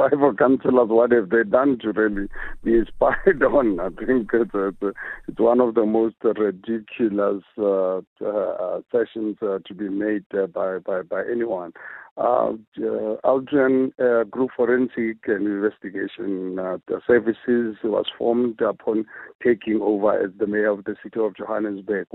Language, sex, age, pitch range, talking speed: English, male, 50-69, 105-120 Hz, 155 wpm